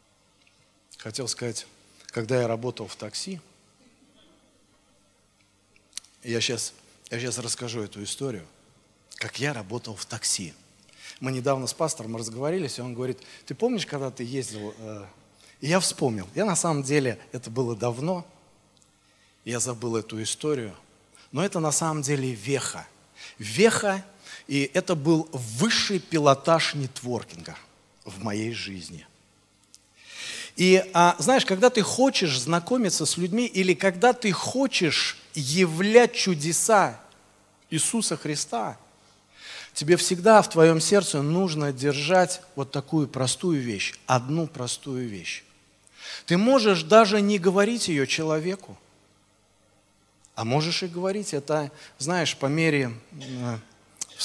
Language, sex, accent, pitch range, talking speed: Russian, male, native, 110-175 Hz, 120 wpm